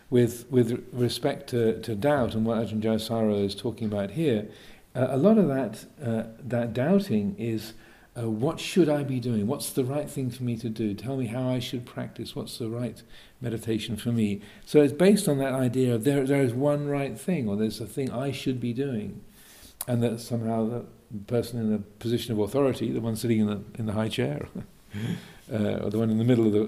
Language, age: English, 50-69